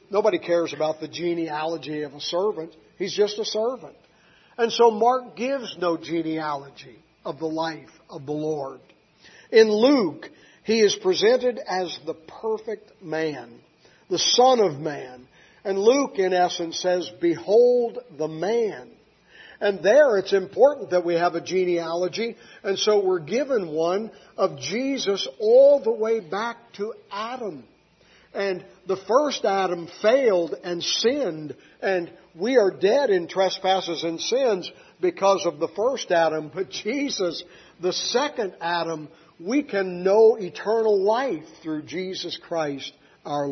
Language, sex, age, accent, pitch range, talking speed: English, male, 50-69, American, 160-225 Hz, 140 wpm